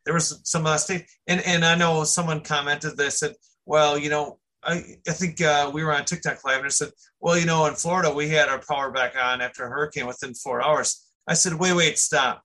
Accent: American